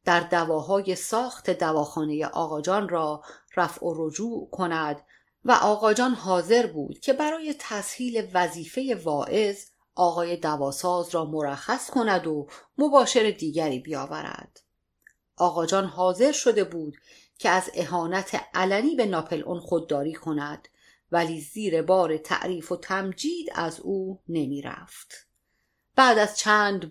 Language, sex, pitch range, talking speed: Persian, female, 160-220 Hz, 115 wpm